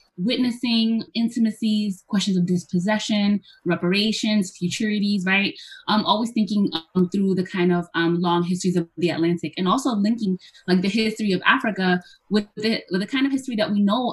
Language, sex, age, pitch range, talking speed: English, female, 20-39, 180-215 Hz, 175 wpm